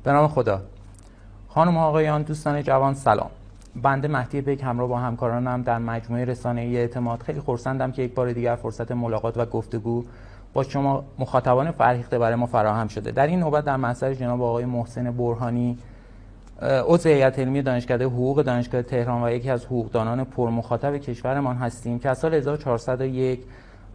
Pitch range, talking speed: 120-130 Hz, 165 wpm